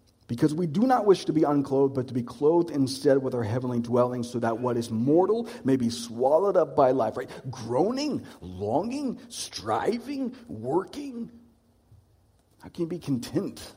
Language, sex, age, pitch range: English, male, 50-69, 105-150 Hz